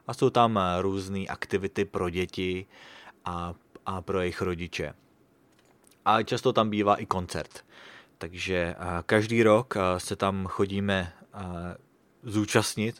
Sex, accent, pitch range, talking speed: male, Czech, 90-110 Hz, 110 wpm